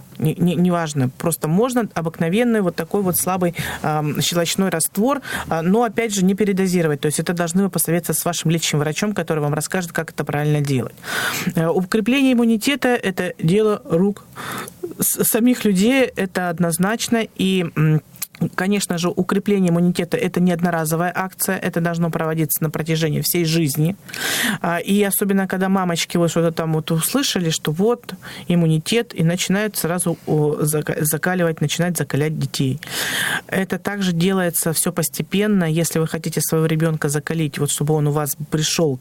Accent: native